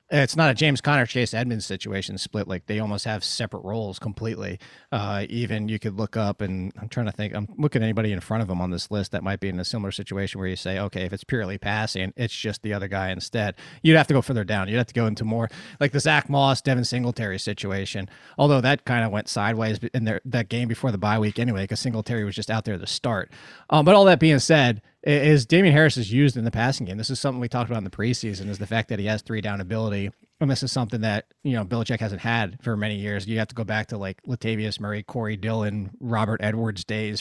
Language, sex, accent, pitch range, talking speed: English, male, American, 105-140 Hz, 260 wpm